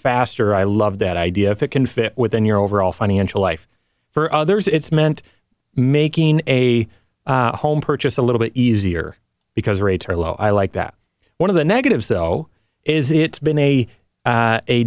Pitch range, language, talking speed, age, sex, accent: 105-135 Hz, English, 180 wpm, 30-49, male, American